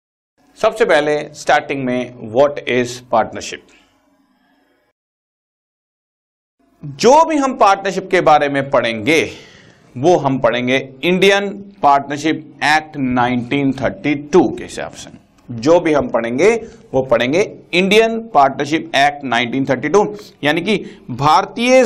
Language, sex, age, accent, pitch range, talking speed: Hindi, male, 50-69, native, 150-220 Hz, 105 wpm